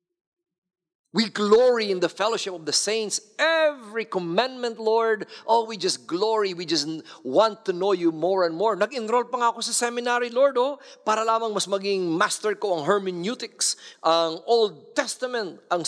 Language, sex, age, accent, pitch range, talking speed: English, male, 50-69, Filipino, 155-235 Hz, 160 wpm